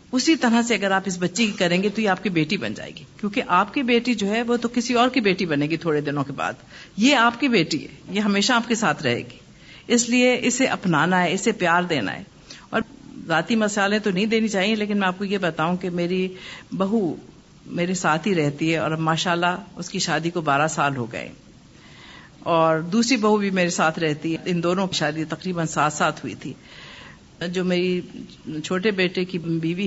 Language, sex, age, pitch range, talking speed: Urdu, female, 50-69, 175-220 Hz, 225 wpm